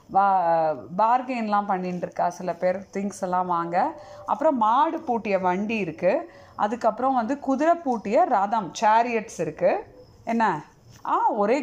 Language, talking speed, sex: Tamil, 120 wpm, female